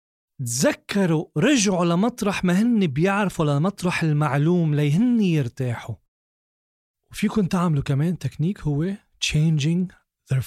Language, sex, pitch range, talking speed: Arabic, male, 135-195 Hz, 95 wpm